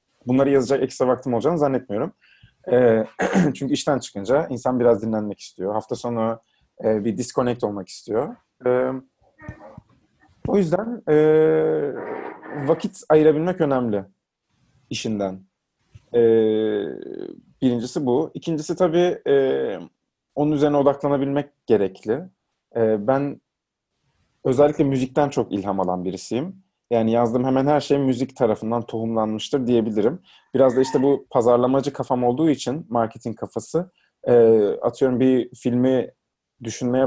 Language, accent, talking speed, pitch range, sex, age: Turkish, native, 105 wpm, 115-145 Hz, male, 30-49